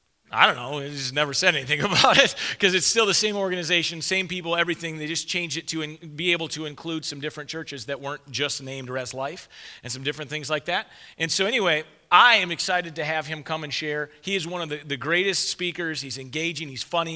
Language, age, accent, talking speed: Ukrainian, 40-59, American, 240 wpm